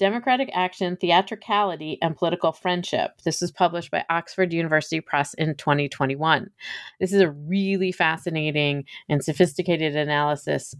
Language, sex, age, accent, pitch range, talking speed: English, female, 40-59, American, 155-190 Hz, 130 wpm